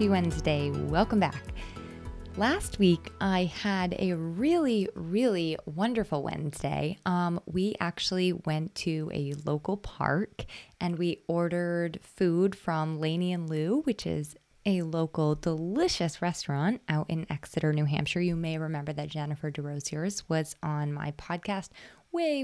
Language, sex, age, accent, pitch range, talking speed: English, female, 20-39, American, 155-200 Hz, 135 wpm